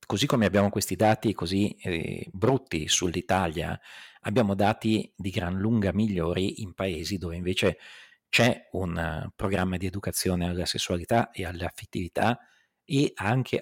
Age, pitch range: 50-69, 90-110 Hz